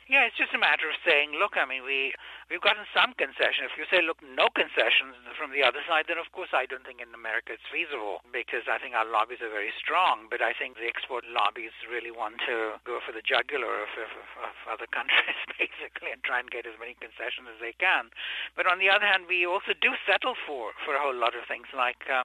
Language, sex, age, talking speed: English, male, 60-79, 245 wpm